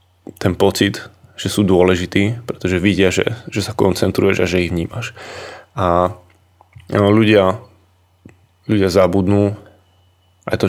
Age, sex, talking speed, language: 20-39, male, 120 wpm, Slovak